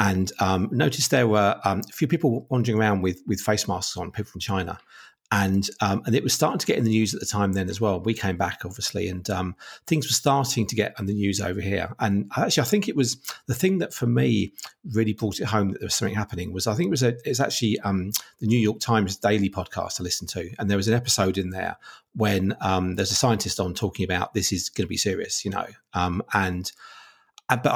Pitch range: 100-125 Hz